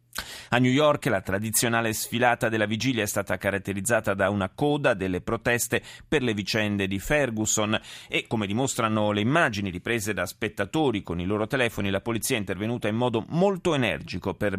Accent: native